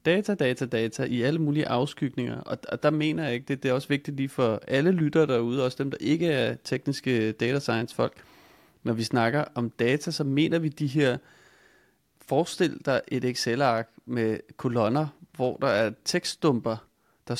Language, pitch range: Danish, 120-150 Hz